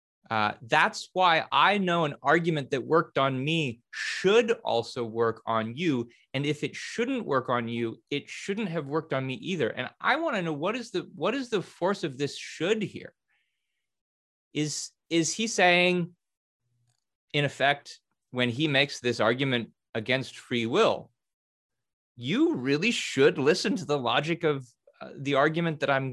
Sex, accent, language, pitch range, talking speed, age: male, American, English, 125-165 Hz, 170 wpm, 30-49